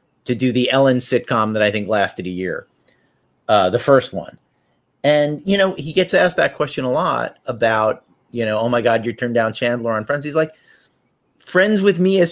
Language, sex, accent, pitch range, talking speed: English, male, American, 115-165 Hz, 210 wpm